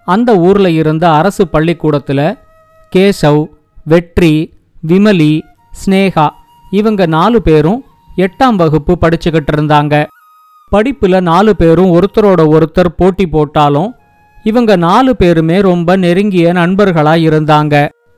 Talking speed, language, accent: 95 wpm, Tamil, native